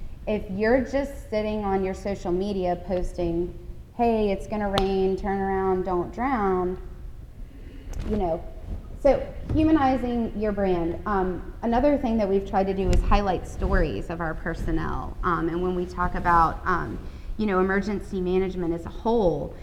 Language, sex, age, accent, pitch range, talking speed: English, female, 20-39, American, 175-210 Hz, 160 wpm